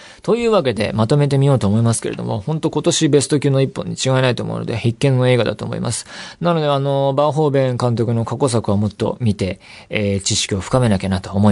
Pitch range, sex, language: 105-145 Hz, male, Japanese